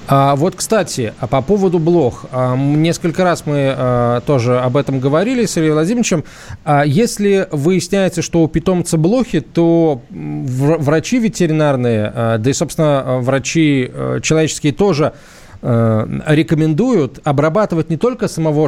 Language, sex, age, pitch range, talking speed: Russian, male, 20-39, 130-170 Hz, 115 wpm